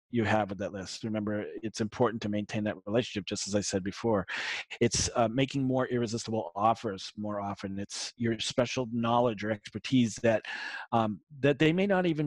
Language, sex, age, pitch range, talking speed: English, male, 40-59, 105-125 Hz, 185 wpm